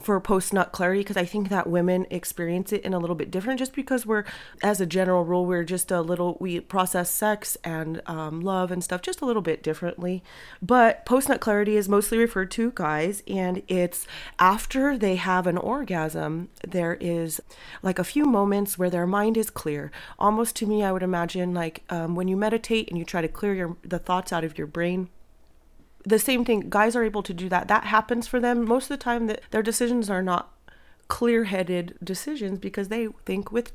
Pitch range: 175-215 Hz